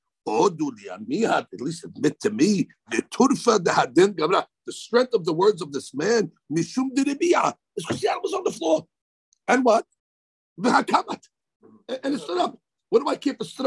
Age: 50-69